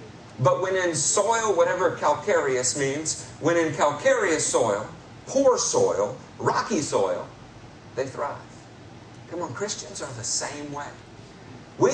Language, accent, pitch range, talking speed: English, American, 115-170 Hz, 125 wpm